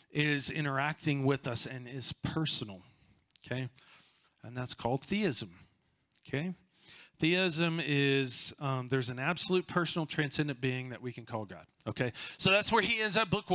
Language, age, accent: English, 40-59, American